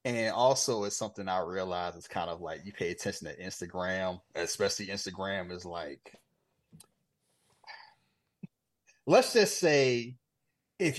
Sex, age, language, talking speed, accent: male, 30-49, English, 125 wpm, American